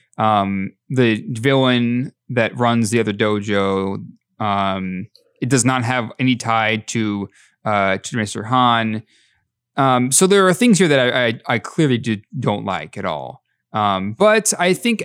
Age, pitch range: 20-39, 110-145 Hz